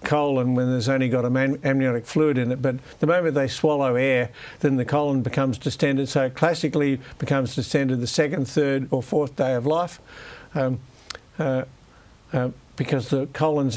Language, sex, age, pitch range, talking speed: English, male, 60-79, 130-155 Hz, 170 wpm